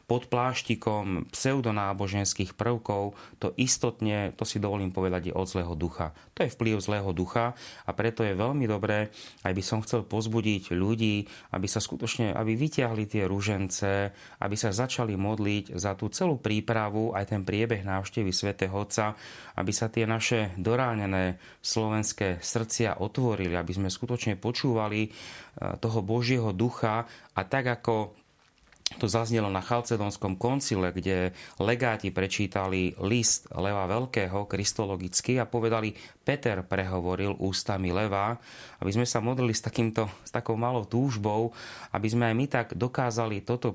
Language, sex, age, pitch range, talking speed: Slovak, male, 30-49, 95-115 Hz, 140 wpm